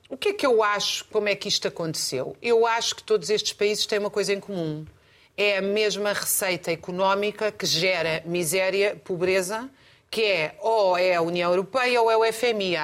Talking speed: 200 wpm